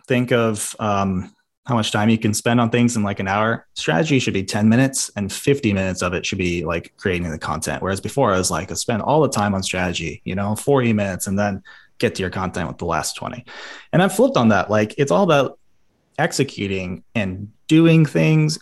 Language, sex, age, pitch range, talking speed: English, male, 20-39, 100-135 Hz, 225 wpm